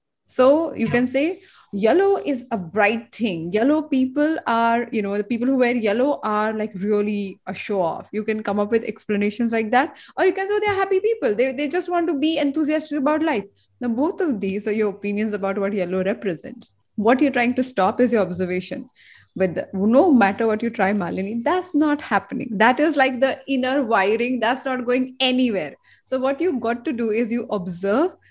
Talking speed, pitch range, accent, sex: 205 wpm, 205-270 Hz, Indian, female